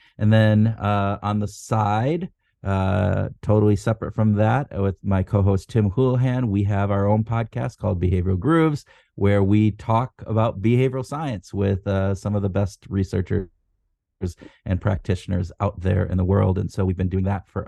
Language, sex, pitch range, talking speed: English, male, 95-105 Hz, 175 wpm